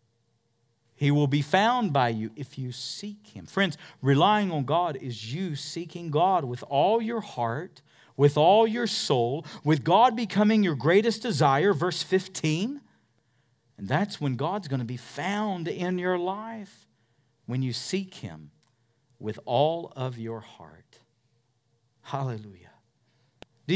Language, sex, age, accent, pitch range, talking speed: English, male, 40-59, American, 125-175 Hz, 140 wpm